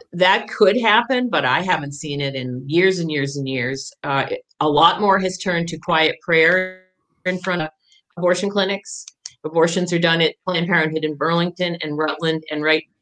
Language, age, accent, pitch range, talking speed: English, 50-69, American, 140-195 Hz, 185 wpm